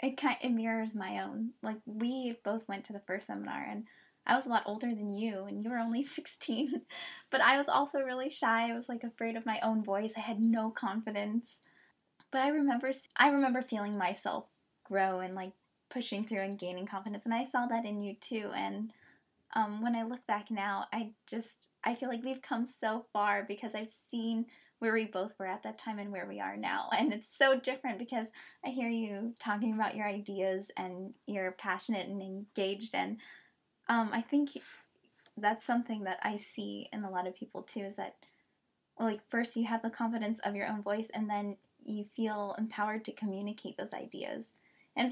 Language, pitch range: English, 205-235 Hz